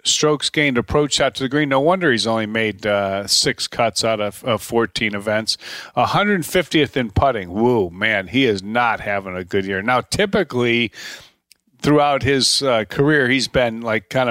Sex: male